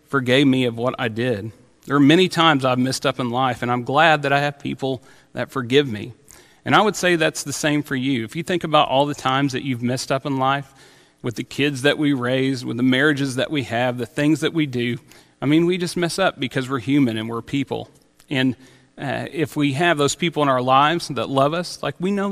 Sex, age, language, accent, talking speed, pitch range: male, 40-59, English, American, 245 wpm, 125-150 Hz